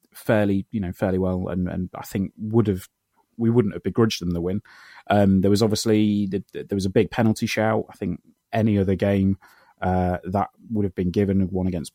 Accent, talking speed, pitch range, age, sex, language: British, 215 wpm, 95-120 Hz, 30-49, male, English